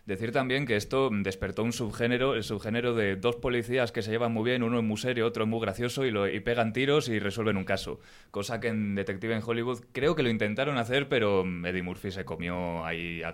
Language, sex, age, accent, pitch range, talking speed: Spanish, male, 20-39, Spanish, 95-130 Hz, 235 wpm